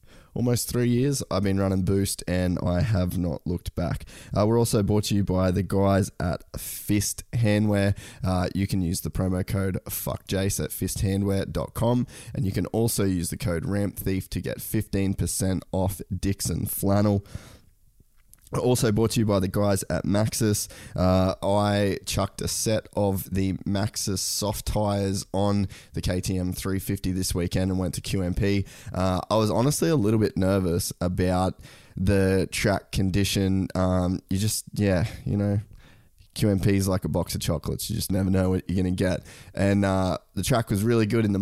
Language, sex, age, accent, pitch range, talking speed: English, male, 20-39, Australian, 95-105 Hz, 170 wpm